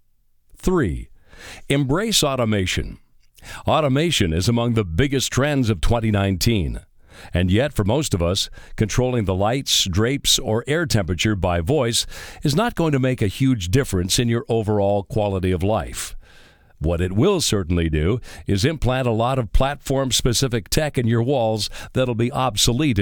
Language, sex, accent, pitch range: English, male, American, 100-135 Hz